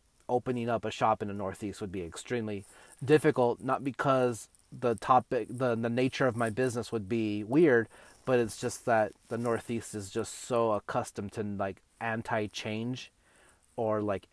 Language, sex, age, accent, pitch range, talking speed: English, male, 30-49, American, 105-125 Hz, 165 wpm